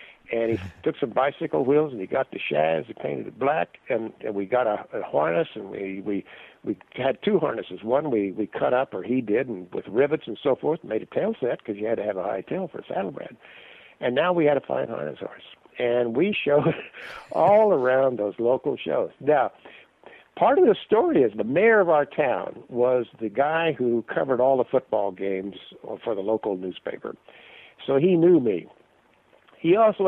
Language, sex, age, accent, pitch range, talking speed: English, male, 60-79, American, 110-165 Hz, 210 wpm